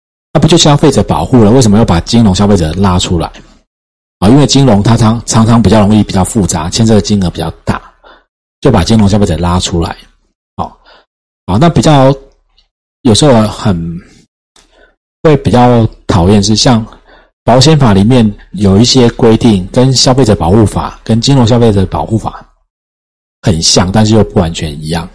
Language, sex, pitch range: Chinese, male, 95-130 Hz